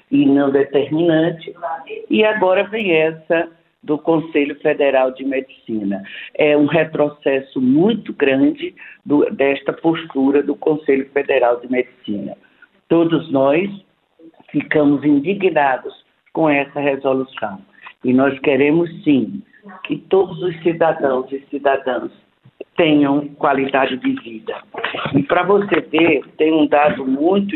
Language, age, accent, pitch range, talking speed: Portuguese, 60-79, Brazilian, 145-200 Hz, 115 wpm